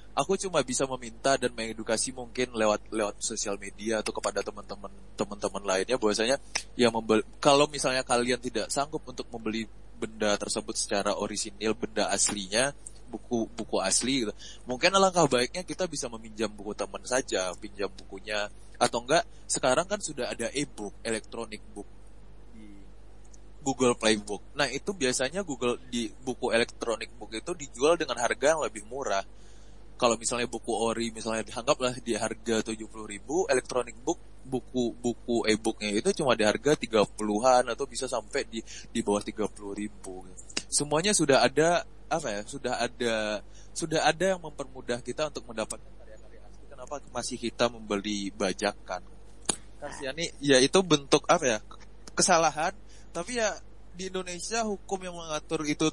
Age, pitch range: 20-39, 105-135 Hz